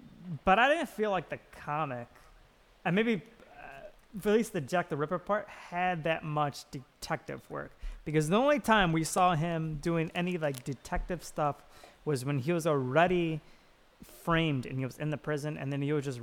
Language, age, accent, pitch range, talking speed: English, 20-39, American, 135-175 Hz, 190 wpm